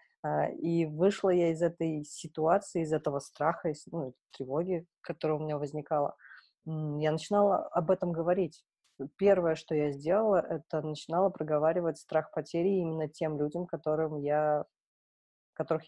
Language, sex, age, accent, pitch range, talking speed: Russian, female, 20-39, native, 150-175 Hz, 135 wpm